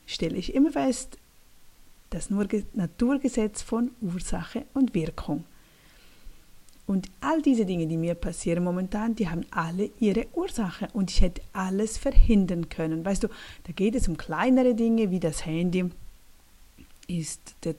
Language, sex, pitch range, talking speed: German, female, 175-235 Hz, 140 wpm